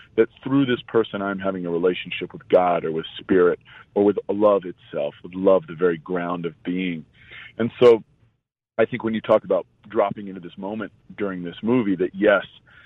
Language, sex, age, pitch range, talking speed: English, male, 40-59, 90-110 Hz, 190 wpm